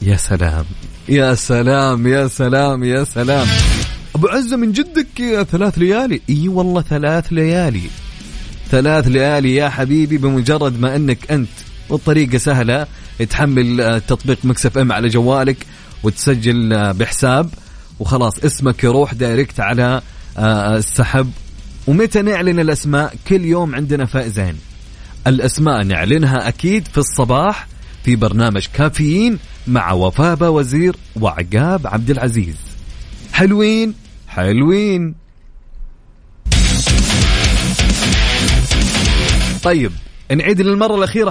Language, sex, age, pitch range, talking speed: Arabic, male, 30-49, 120-175 Hz, 100 wpm